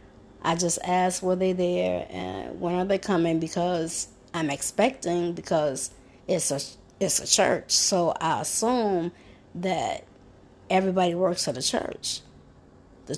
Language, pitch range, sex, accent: English, 160-195 Hz, female, American